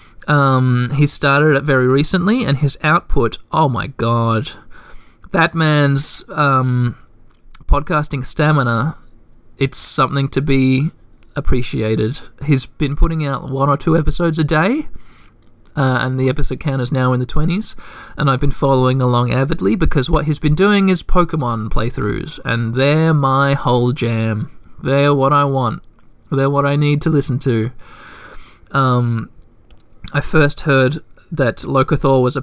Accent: Australian